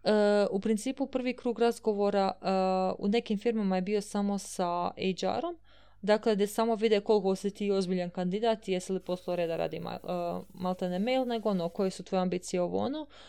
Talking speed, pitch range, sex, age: 185 wpm, 195-230 Hz, female, 20-39